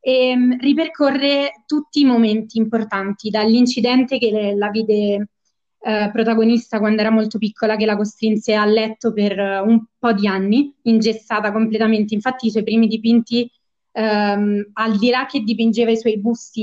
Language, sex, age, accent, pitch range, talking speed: Italian, female, 20-39, native, 210-240 Hz, 145 wpm